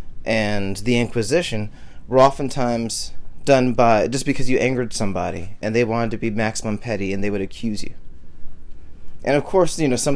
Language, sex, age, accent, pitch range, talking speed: English, male, 30-49, American, 100-140 Hz, 175 wpm